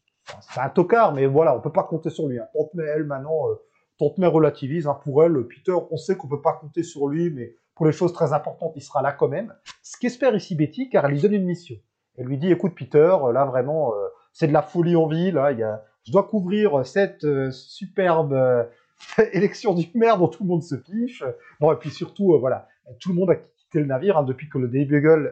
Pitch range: 135-185 Hz